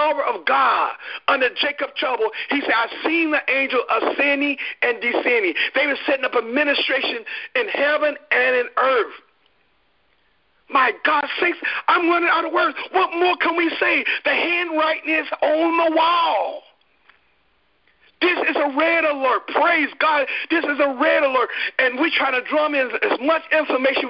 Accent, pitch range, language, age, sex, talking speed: American, 260-340 Hz, English, 50-69, male, 160 wpm